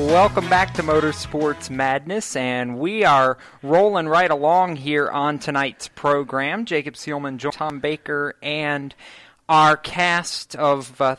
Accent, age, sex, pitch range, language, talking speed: American, 40-59, male, 135-175 Hz, English, 130 wpm